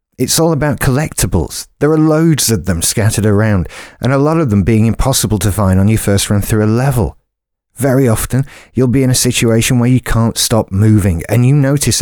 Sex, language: male, English